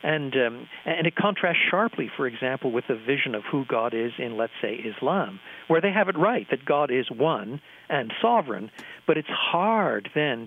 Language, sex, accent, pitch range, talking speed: English, male, American, 120-155 Hz, 195 wpm